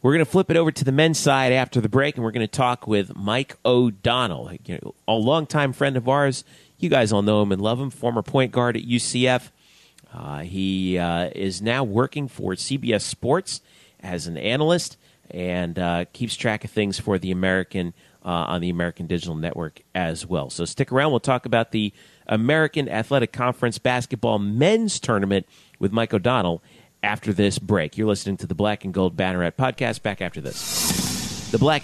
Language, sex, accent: English, male, American